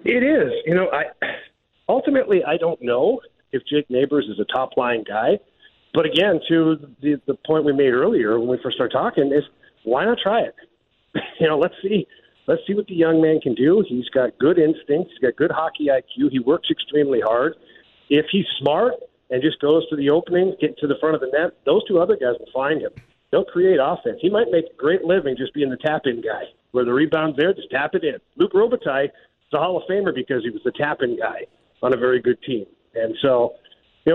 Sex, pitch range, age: male, 125-165 Hz, 40-59